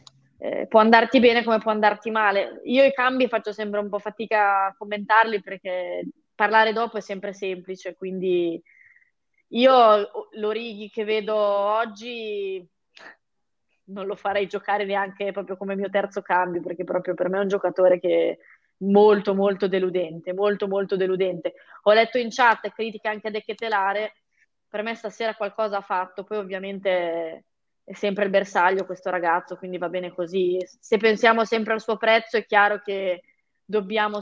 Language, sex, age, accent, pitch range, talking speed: Italian, female, 20-39, native, 195-225 Hz, 165 wpm